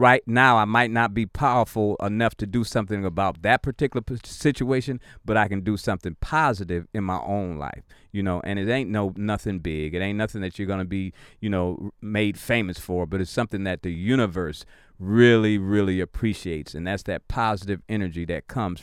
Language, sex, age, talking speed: English, male, 40-59, 200 wpm